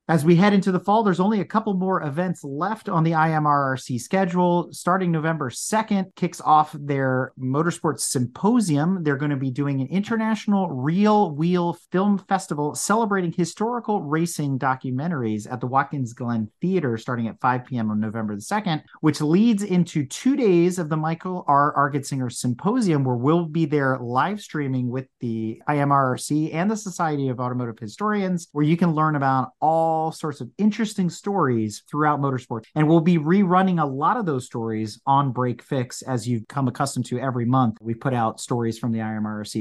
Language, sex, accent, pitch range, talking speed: English, male, American, 125-175 Hz, 175 wpm